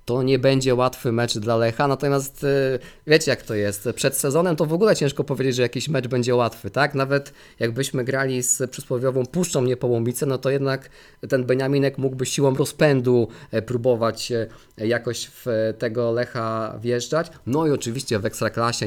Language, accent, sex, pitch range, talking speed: Polish, native, male, 110-135 Hz, 160 wpm